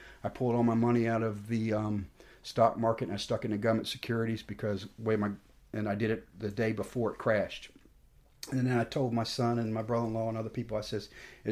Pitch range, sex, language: 110-125 Hz, male, English